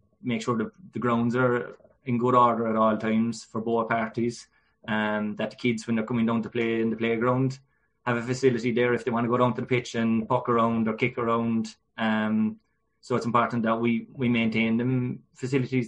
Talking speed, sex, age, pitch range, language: 220 wpm, male, 20-39, 110-120 Hz, English